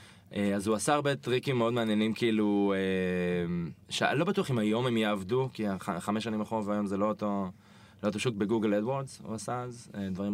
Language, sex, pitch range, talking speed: Hebrew, male, 100-125 Hz, 210 wpm